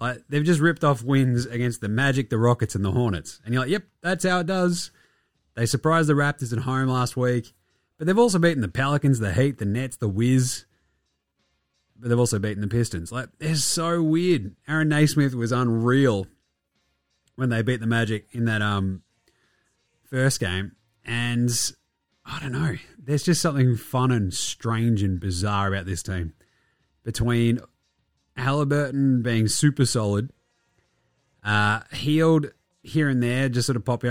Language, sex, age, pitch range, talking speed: English, male, 30-49, 110-140 Hz, 165 wpm